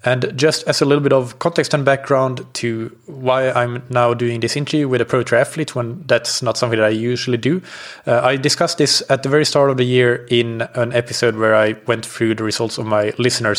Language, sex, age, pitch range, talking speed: English, male, 20-39, 110-130 Hz, 230 wpm